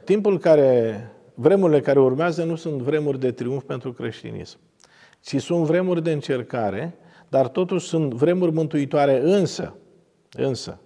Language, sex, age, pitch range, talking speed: Romanian, male, 50-69, 140-190 Hz, 135 wpm